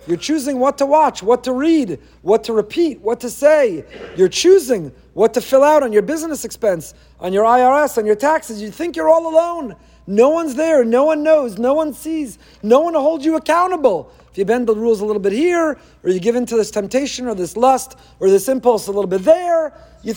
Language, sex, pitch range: English, male, 215-290 Hz